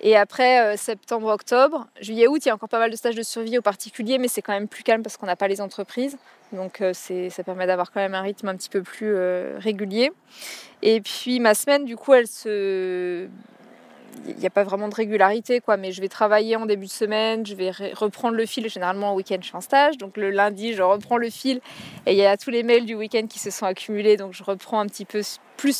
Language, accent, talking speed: French, French, 250 wpm